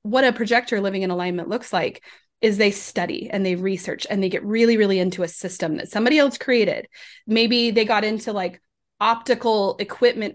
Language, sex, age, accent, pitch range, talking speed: English, female, 30-49, American, 190-230 Hz, 190 wpm